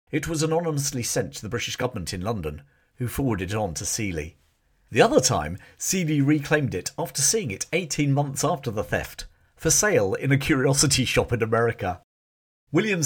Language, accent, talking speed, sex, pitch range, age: English, British, 180 wpm, male, 95-145 Hz, 50-69